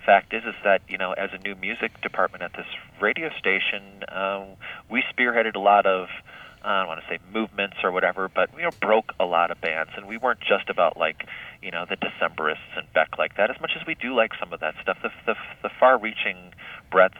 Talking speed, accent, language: 225 wpm, American, English